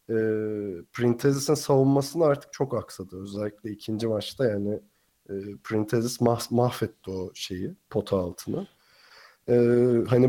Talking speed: 115 wpm